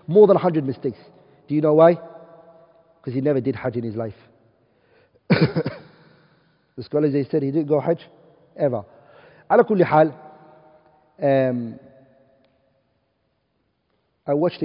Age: 40-59